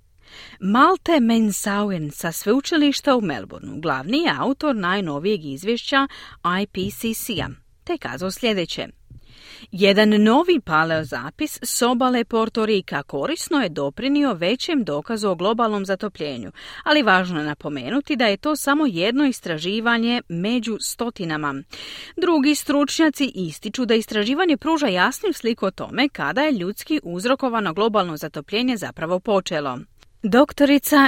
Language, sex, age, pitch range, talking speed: Croatian, female, 40-59, 190-265 Hz, 120 wpm